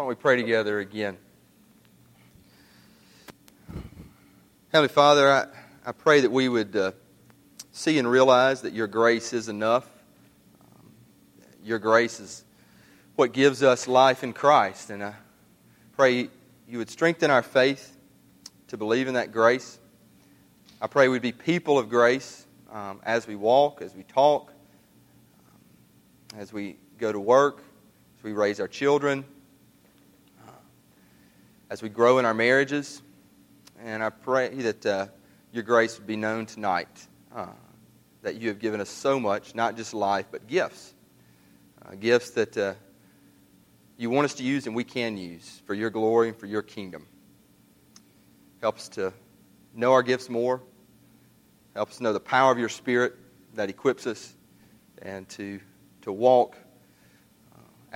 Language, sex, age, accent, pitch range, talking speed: English, male, 30-49, American, 100-130 Hz, 150 wpm